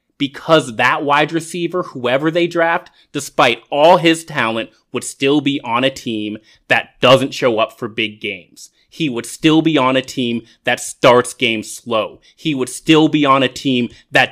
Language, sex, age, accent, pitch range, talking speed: English, male, 30-49, American, 120-160 Hz, 180 wpm